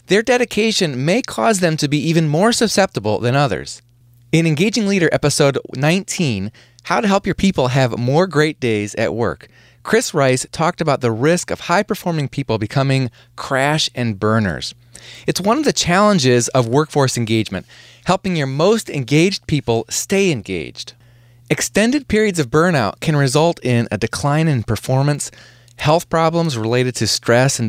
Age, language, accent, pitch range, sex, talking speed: 30-49, English, American, 120-165 Hz, male, 160 wpm